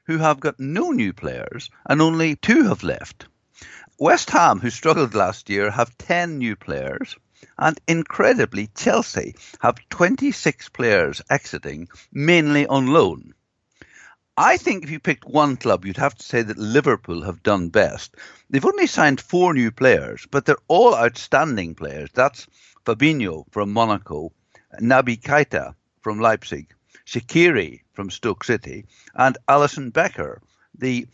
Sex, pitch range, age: male, 110-150 Hz, 60-79